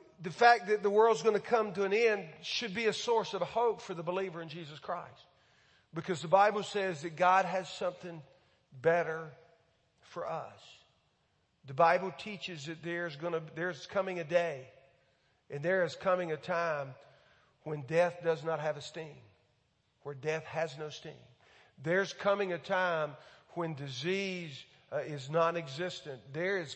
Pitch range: 150-185 Hz